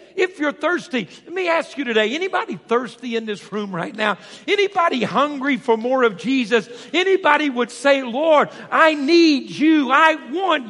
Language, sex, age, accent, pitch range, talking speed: English, male, 50-69, American, 225-305 Hz, 170 wpm